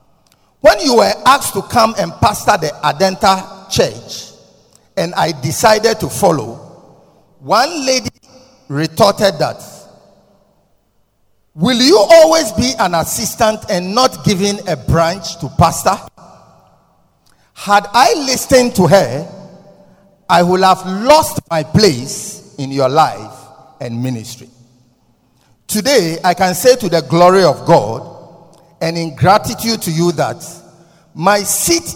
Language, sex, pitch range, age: English, male, 160-220 Hz, 50-69